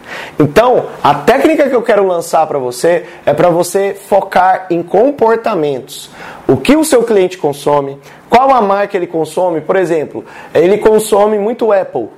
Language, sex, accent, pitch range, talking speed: Portuguese, male, Brazilian, 155-205 Hz, 165 wpm